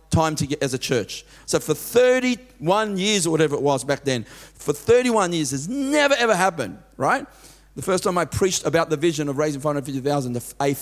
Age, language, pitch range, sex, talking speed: 40-59, English, 140-190 Hz, male, 200 wpm